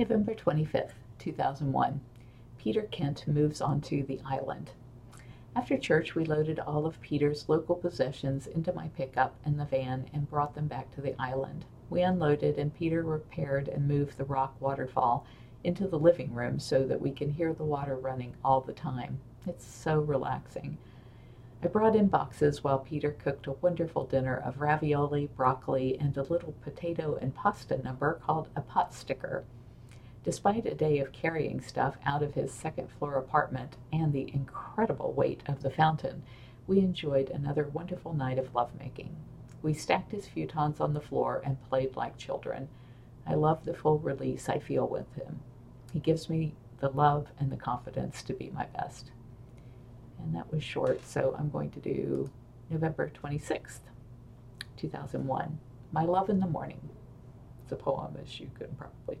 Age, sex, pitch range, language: 50-69, female, 125-155 Hz, English